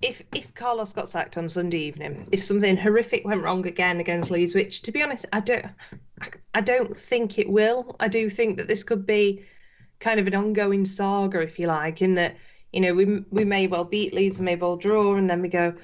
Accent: British